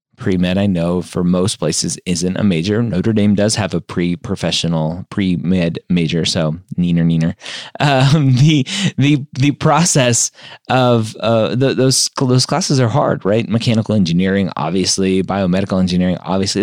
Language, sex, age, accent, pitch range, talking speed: English, male, 30-49, American, 100-145 Hz, 145 wpm